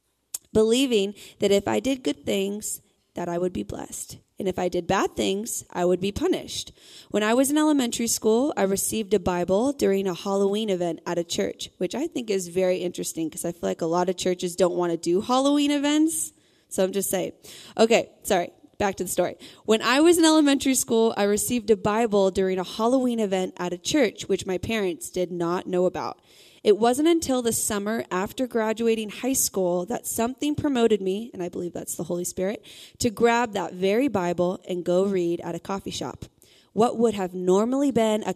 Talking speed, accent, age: 205 wpm, American, 20-39